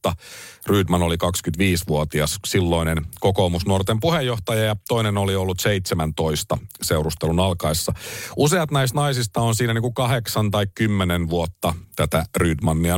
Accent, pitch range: native, 95-130 Hz